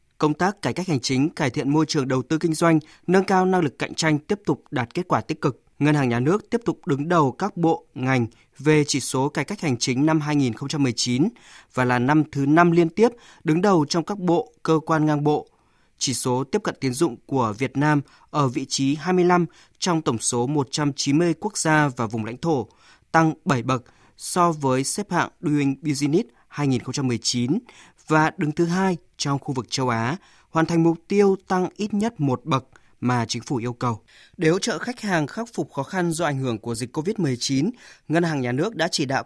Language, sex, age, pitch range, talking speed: Vietnamese, male, 20-39, 130-170 Hz, 215 wpm